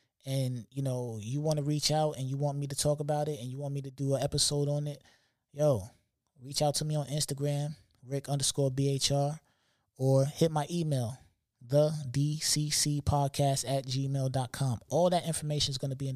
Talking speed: 190 wpm